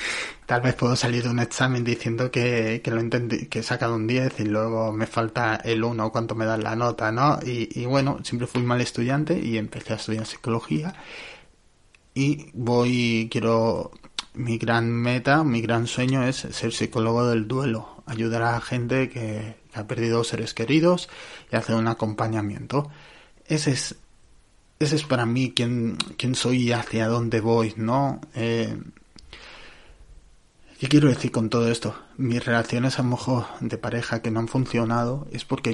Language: Spanish